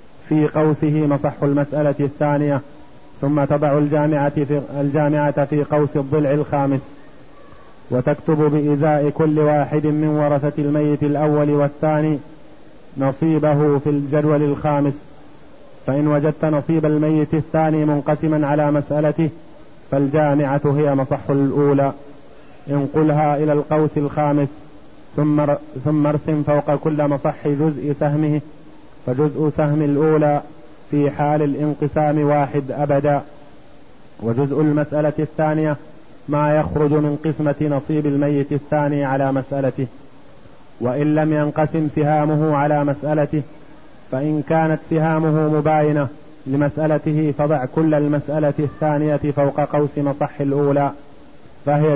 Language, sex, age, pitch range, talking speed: Arabic, male, 30-49, 145-150 Hz, 105 wpm